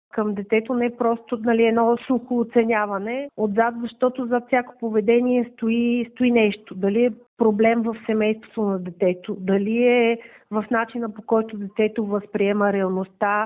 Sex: female